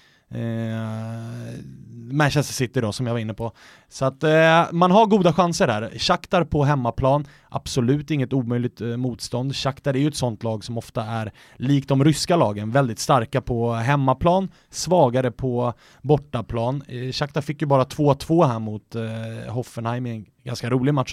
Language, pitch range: English, 120-150 Hz